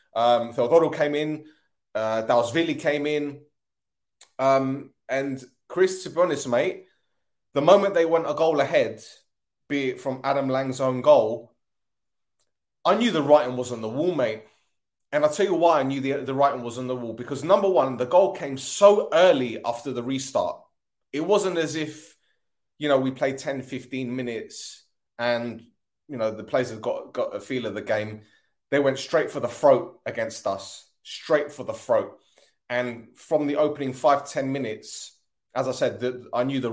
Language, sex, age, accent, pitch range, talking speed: English, male, 30-49, British, 120-140 Hz, 185 wpm